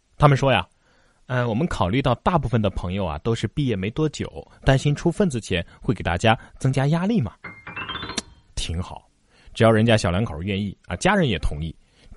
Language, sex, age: Chinese, male, 30-49